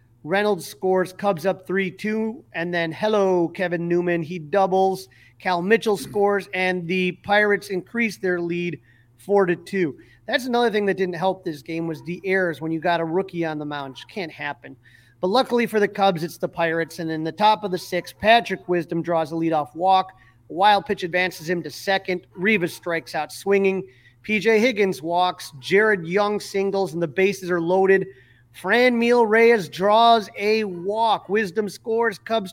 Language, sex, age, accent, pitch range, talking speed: English, male, 30-49, American, 175-225 Hz, 175 wpm